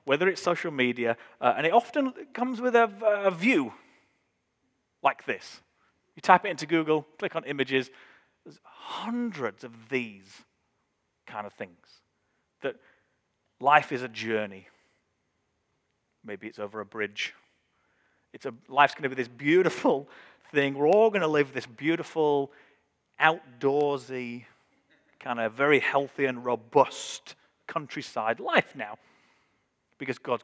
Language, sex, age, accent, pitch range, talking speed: English, male, 30-49, British, 130-200 Hz, 135 wpm